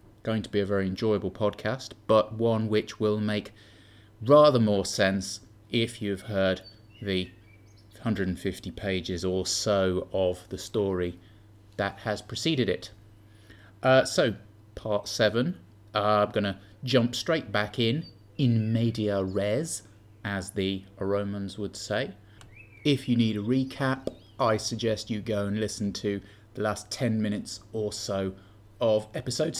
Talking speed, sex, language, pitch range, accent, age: 140 wpm, male, English, 95-110 Hz, British, 30-49